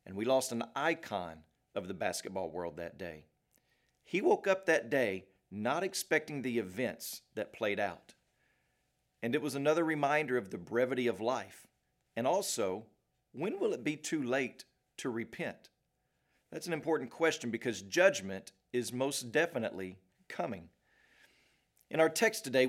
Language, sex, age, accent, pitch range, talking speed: English, male, 40-59, American, 120-165 Hz, 150 wpm